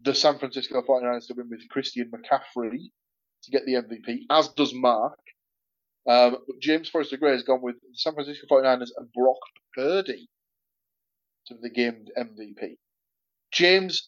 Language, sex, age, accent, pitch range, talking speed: English, male, 20-39, British, 120-150 Hz, 145 wpm